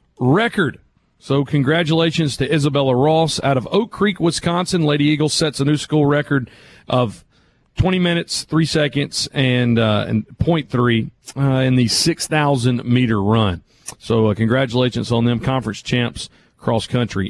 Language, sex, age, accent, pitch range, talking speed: English, male, 40-59, American, 125-160 Hz, 140 wpm